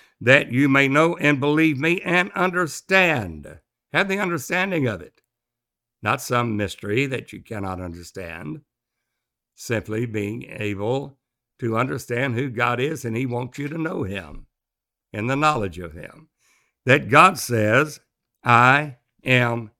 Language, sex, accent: English, male, American